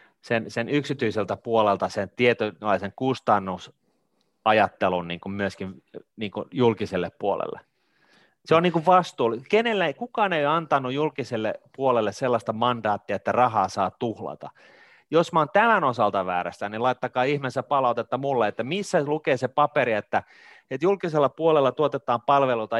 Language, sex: Finnish, male